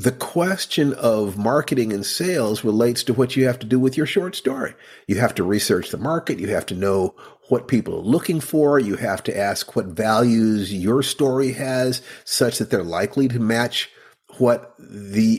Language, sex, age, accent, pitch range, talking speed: English, male, 50-69, American, 115-145 Hz, 190 wpm